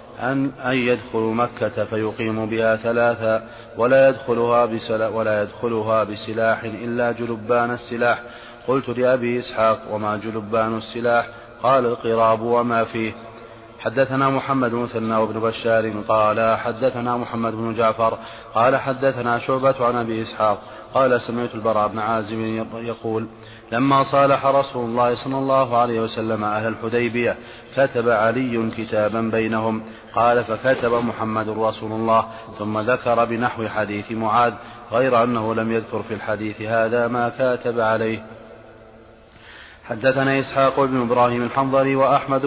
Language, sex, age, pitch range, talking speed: Arabic, male, 30-49, 110-120 Hz, 120 wpm